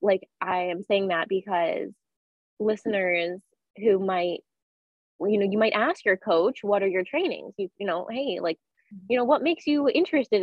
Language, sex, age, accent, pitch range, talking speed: English, female, 20-39, American, 185-225 Hz, 180 wpm